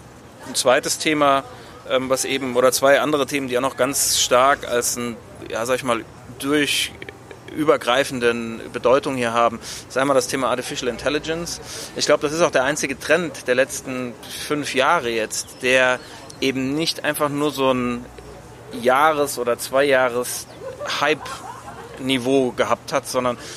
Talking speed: 150 wpm